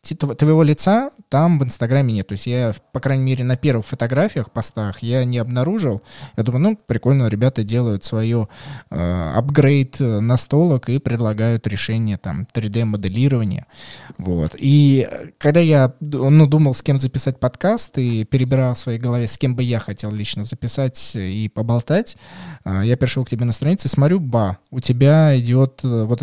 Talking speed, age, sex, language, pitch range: 165 wpm, 20-39, male, Russian, 115-140 Hz